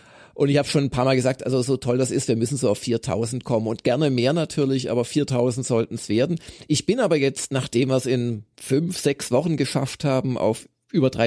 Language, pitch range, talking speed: German, 115-140 Hz, 230 wpm